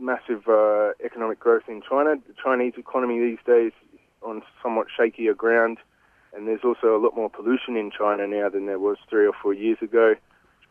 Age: 20-39